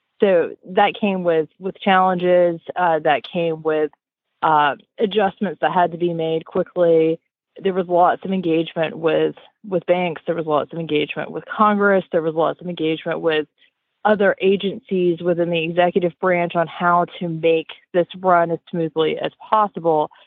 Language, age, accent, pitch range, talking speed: English, 20-39, American, 155-185 Hz, 165 wpm